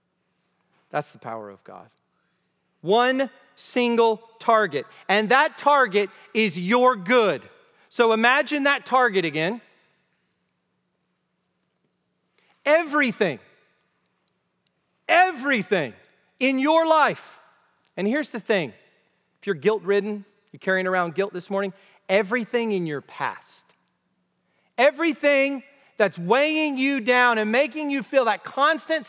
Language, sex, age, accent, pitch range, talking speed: English, male, 40-59, American, 195-280 Hz, 110 wpm